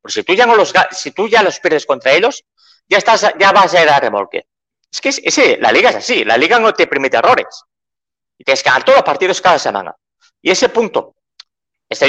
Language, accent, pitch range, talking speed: Spanish, Spanish, 160-265 Hz, 240 wpm